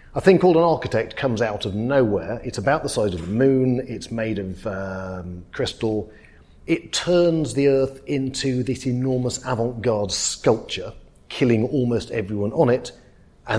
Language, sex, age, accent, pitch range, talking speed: English, male, 40-59, British, 105-130 Hz, 160 wpm